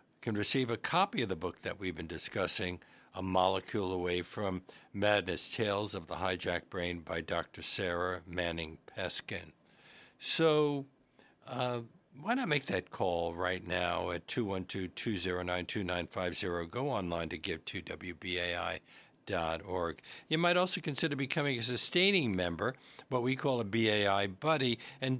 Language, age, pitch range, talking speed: English, 60-79, 95-130 Hz, 135 wpm